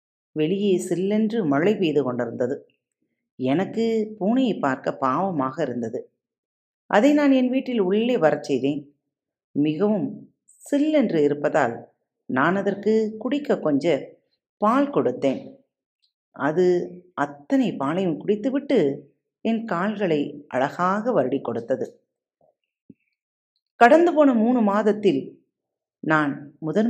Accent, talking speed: native, 85 wpm